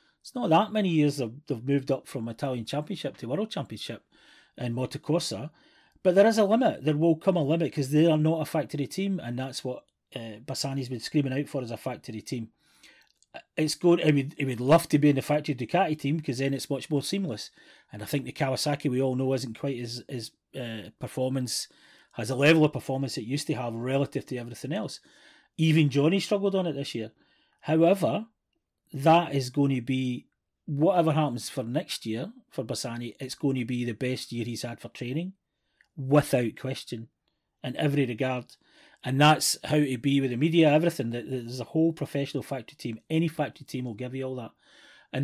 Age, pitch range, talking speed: 30-49, 125-155 Hz, 205 wpm